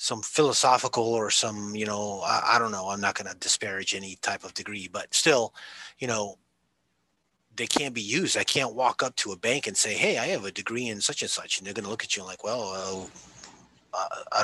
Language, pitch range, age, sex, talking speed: English, 105-140 Hz, 30-49, male, 235 wpm